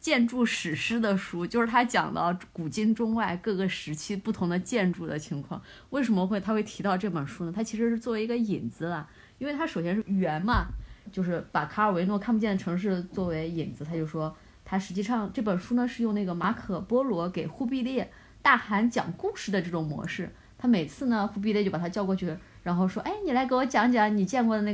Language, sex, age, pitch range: Chinese, female, 20-39, 170-230 Hz